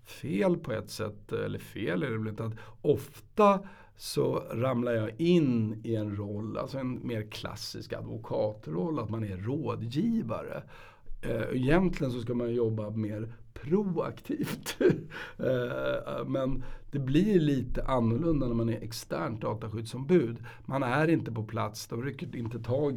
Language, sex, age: Swedish, male, 60-79